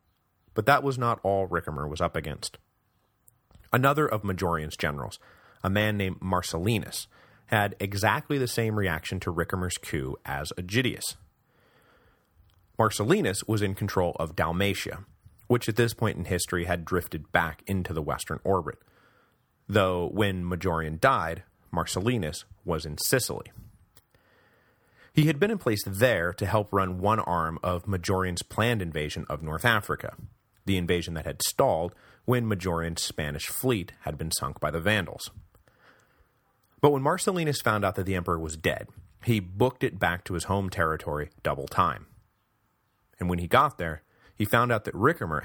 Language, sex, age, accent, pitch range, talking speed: English, male, 30-49, American, 85-110 Hz, 155 wpm